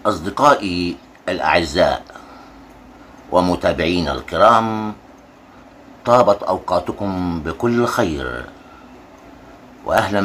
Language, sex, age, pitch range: Arabic, male, 60-79, 90-130 Hz